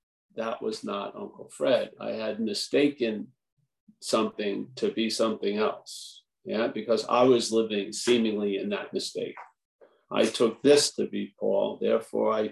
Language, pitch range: English, 110-135 Hz